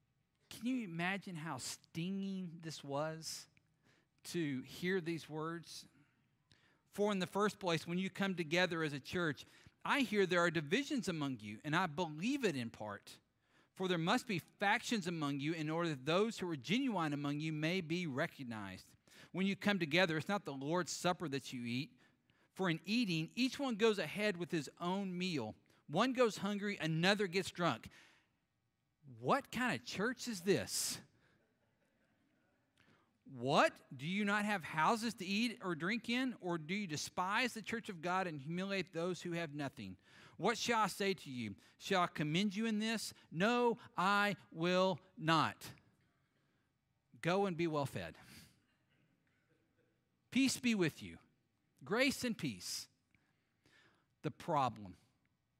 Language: English